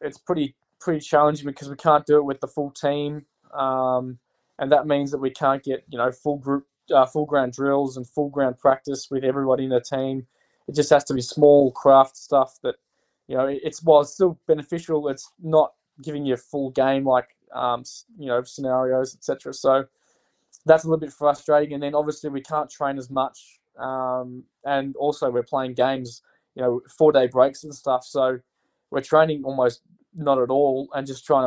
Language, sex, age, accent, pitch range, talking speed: English, male, 20-39, Australian, 130-145 Hz, 200 wpm